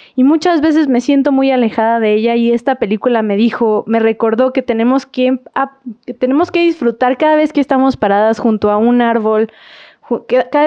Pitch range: 230-280 Hz